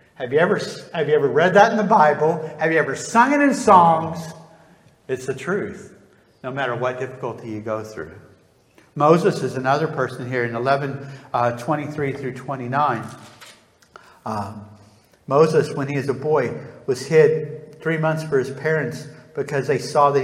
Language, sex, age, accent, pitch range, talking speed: English, male, 60-79, American, 125-155 Hz, 170 wpm